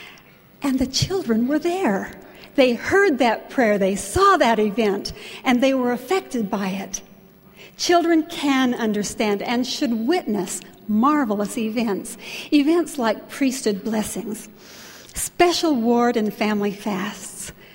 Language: English